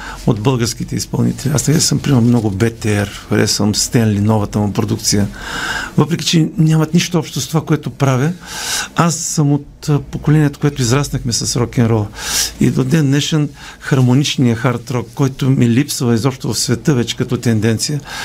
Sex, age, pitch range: male, 50-69, 120-145 Hz